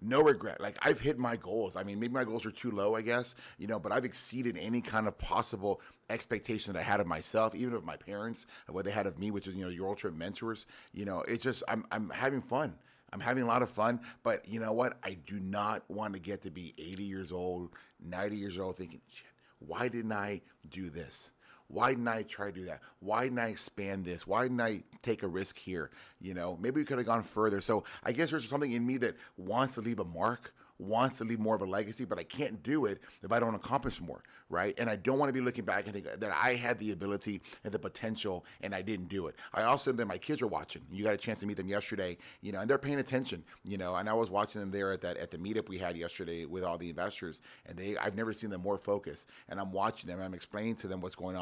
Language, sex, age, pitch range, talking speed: English, male, 30-49, 95-115 Hz, 265 wpm